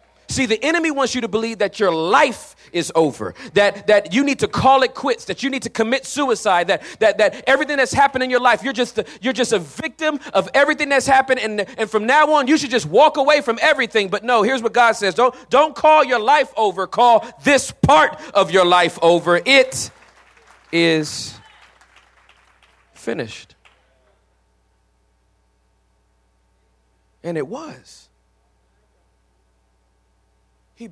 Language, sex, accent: English, male, American